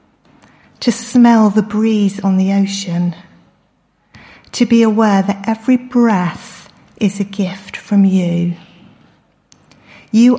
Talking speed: 110 wpm